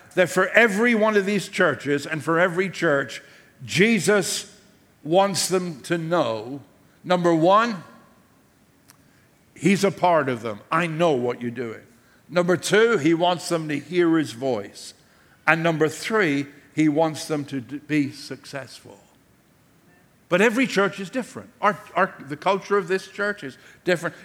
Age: 60-79